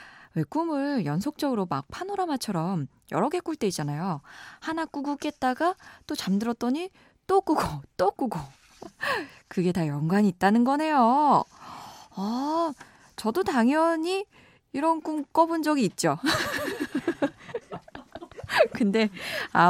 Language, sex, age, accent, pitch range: Korean, female, 20-39, native, 185-295 Hz